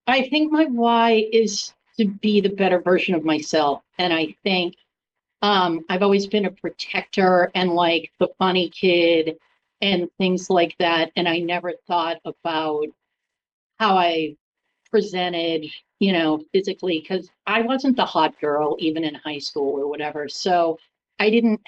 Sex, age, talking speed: female, 40-59, 155 wpm